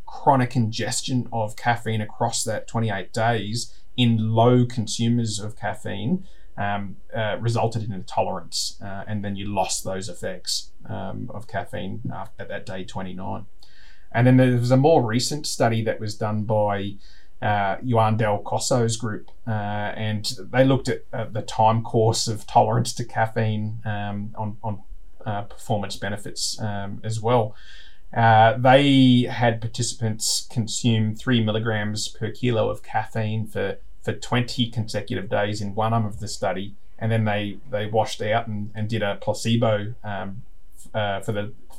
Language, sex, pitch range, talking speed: English, male, 105-120 Hz, 155 wpm